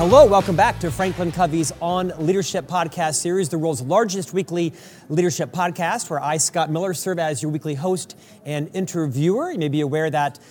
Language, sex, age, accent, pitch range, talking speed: English, male, 40-59, American, 155-190 Hz, 185 wpm